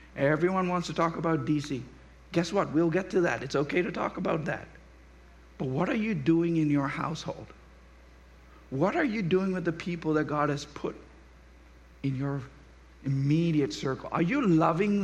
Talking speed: 175 wpm